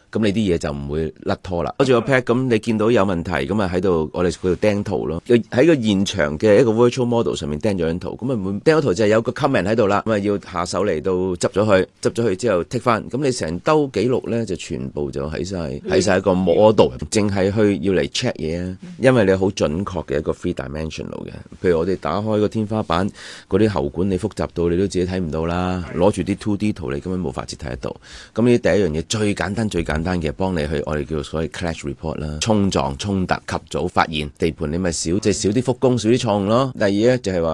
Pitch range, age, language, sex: 80-110 Hz, 30-49, Chinese, male